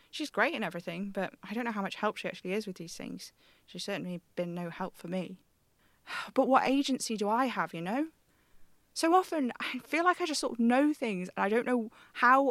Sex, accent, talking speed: female, British, 230 wpm